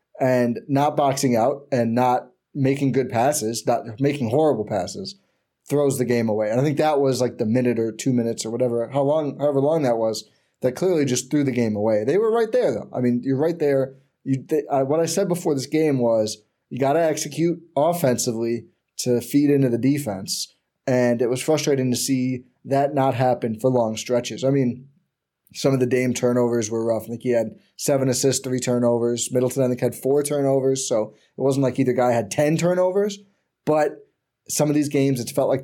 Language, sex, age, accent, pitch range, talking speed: English, male, 20-39, American, 120-140 Hz, 210 wpm